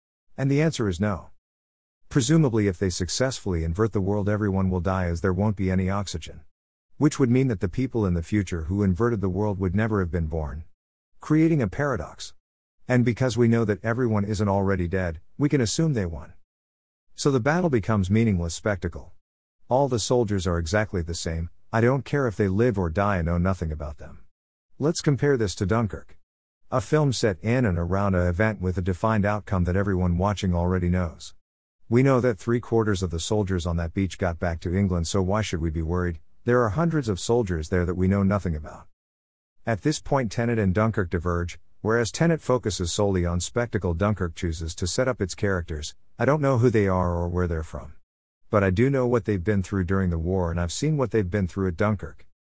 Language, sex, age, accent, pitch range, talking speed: English, male, 50-69, American, 85-115 Hz, 210 wpm